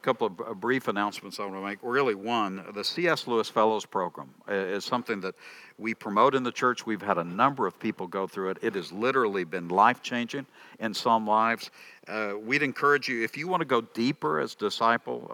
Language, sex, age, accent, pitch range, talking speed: English, male, 60-79, American, 95-120 Hz, 205 wpm